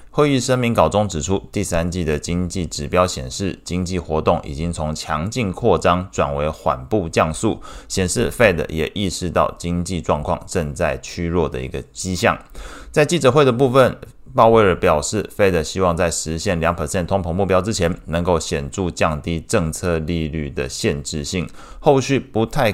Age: 20-39